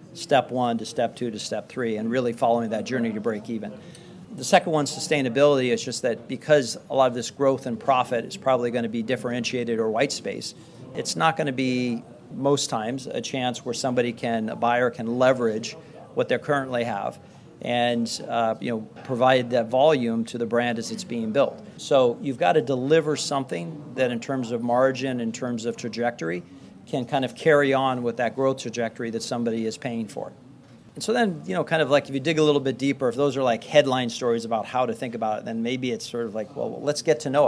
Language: English